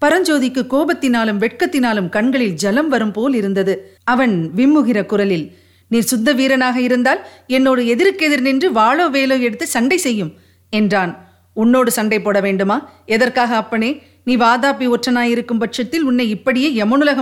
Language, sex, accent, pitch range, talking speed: Tamil, female, native, 205-275 Hz, 130 wpm